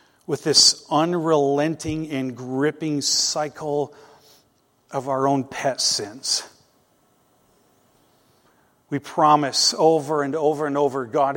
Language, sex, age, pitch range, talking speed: English, male, 40-59, 130-150 Hz, 100 wpm